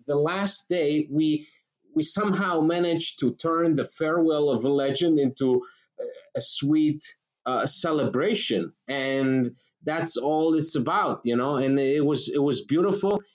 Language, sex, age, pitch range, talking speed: English, male, 30-49, 125-145 Hz, 145 wpm